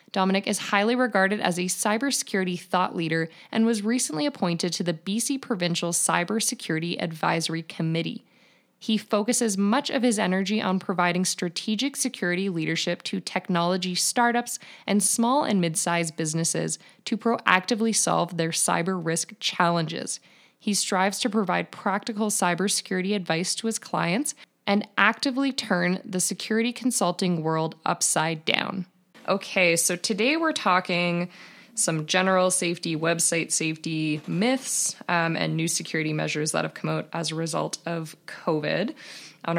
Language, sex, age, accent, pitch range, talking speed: English, female, 20-39, American, 165-215 Hz, 140 wpm